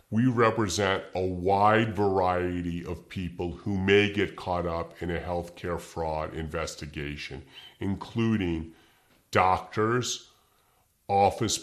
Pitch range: 85-105 Hz